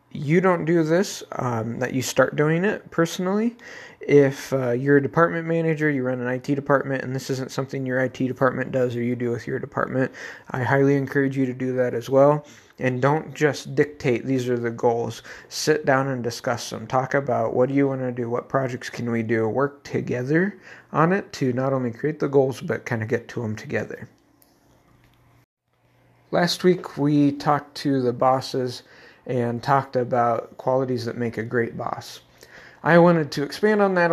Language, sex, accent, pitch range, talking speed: English, male, American, 120-145 Hz, 195 wpm